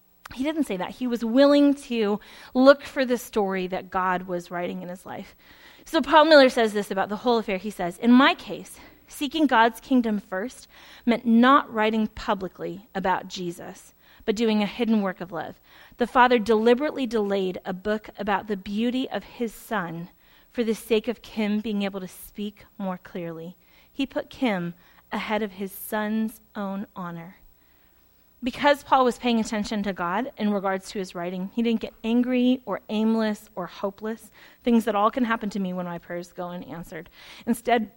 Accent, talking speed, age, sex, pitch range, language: American, 180 wpm, 30-49, female, 185-235 Hz, English